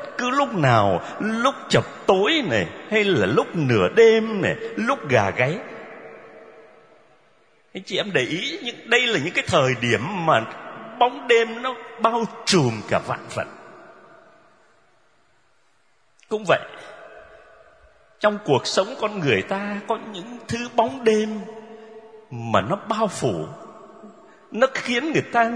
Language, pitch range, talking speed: Vietnamese, 200-265 Hz, 130 wpm